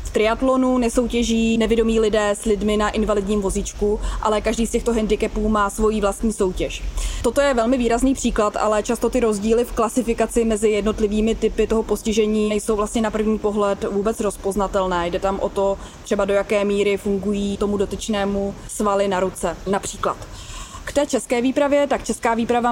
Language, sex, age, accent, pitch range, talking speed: Czech, female, 20-39, native, 205-240 Hz, 165 wpm